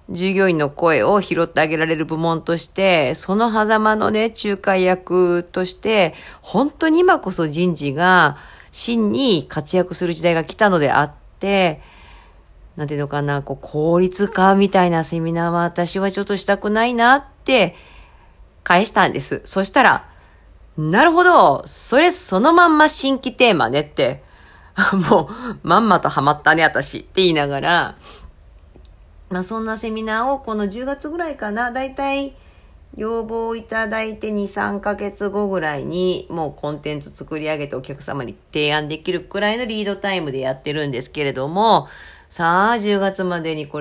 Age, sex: 40-59, female